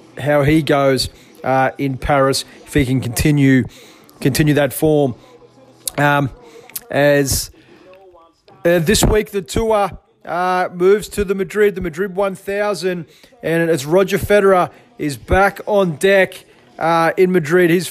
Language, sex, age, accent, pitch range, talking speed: English, male, 30-49, Australian, 160-200 Hz, 135 wpm